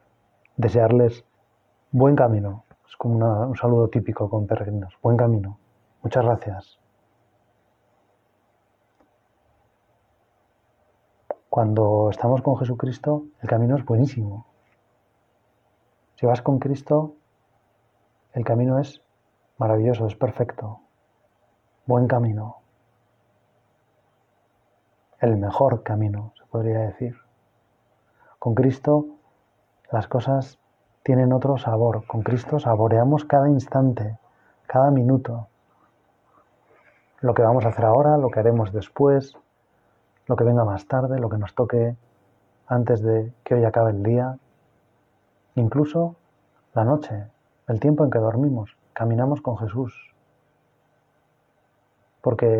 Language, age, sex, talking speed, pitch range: Spanish, 30-49, male, 105 wpm, 110-130 Hz